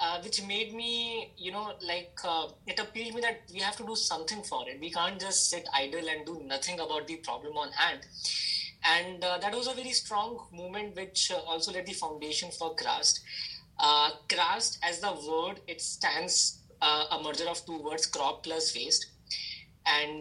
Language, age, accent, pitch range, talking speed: English, 20-39, Indian, 160-215 Hz, 195 wpm